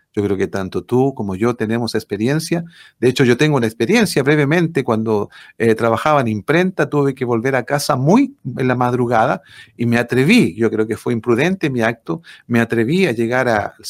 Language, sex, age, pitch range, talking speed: Spanish, male, 40-59, 115-155 Hz, 195 wpm